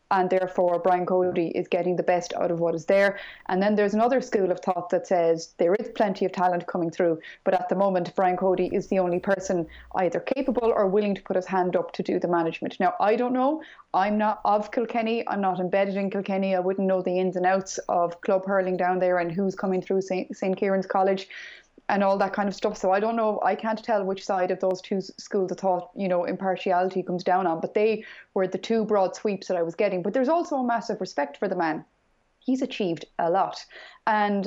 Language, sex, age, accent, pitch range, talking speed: English, female, 20-39, Irish, 185-220 Hz, 235 wpm